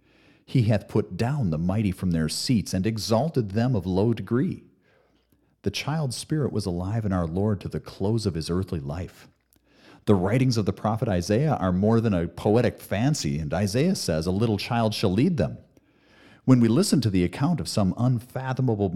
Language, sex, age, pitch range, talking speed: English, male, 40-59, 90-120 Hz, 190 wpm